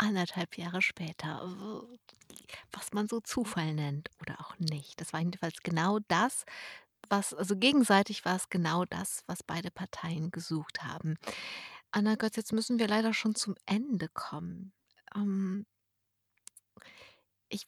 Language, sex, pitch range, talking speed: German, female, 185-220 Hz, 135 wpm